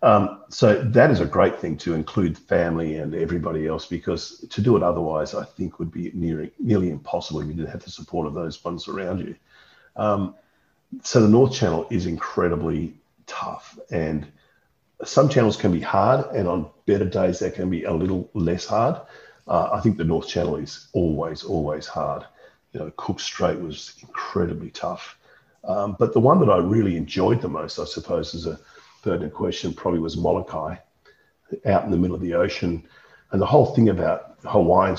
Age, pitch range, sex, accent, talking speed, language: 50-69, 85-105 Hz, male, Australian, 190 wpm, English